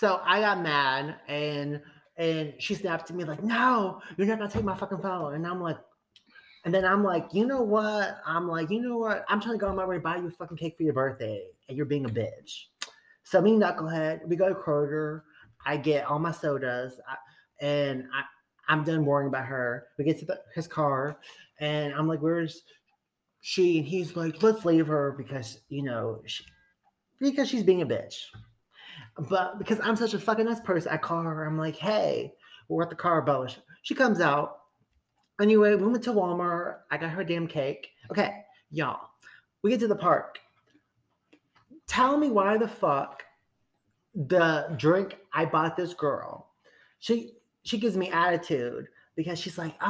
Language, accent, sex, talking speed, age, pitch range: English, American, male, 190 wpm, 30-49, 155-210 Hz